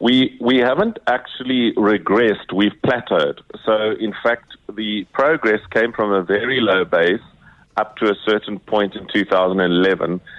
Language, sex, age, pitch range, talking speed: English, male, 50-69, 100-115 Hz, 145 wpm